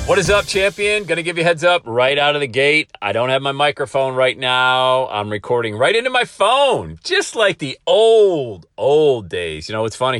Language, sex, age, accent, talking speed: English, male, 40-59, American, 225 wpm